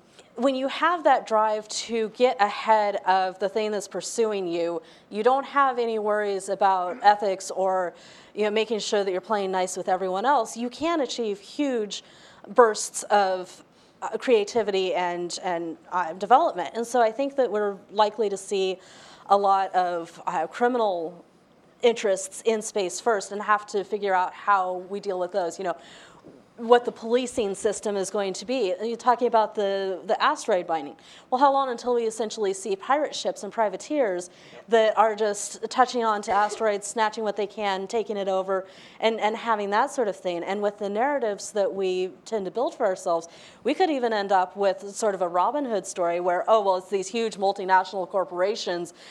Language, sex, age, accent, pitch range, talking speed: English, female, 30-49, American, 190-225 Hz, 185 wpm